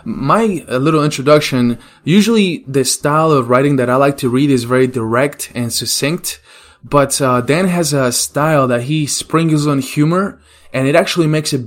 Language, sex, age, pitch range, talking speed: English, male, 20-39, 120-150 Hz, 175 wpm